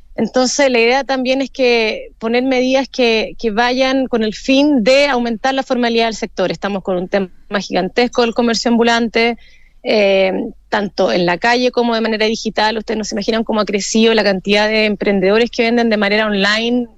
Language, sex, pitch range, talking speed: Spanish, female, 215-255 Hz, 185 wpm